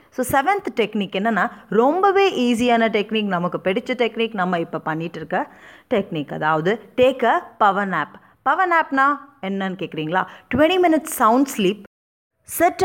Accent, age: native, 30-49